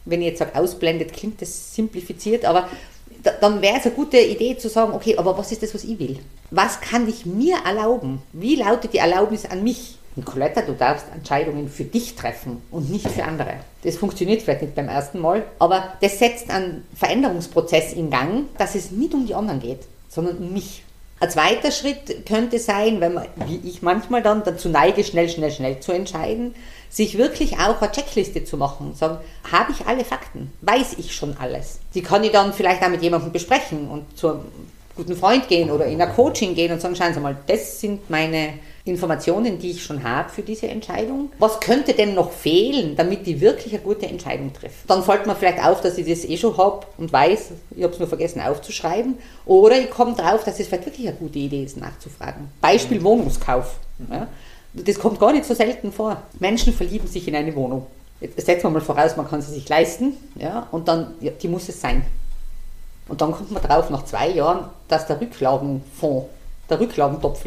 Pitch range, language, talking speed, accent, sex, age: 155-220 Hz, German, 205 wpm, Austrian, female, 50-69